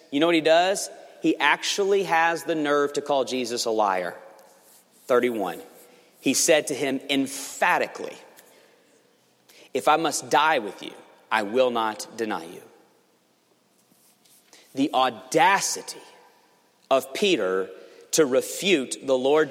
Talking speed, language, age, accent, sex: 125 wpm, English, 40-59, American, male